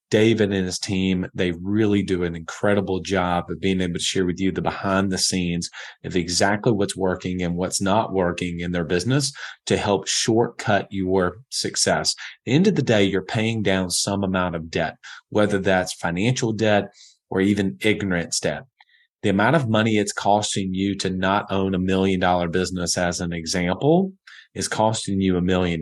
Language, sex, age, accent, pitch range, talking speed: English, male, 30-49, American, 90-105 Hz, 185 wpm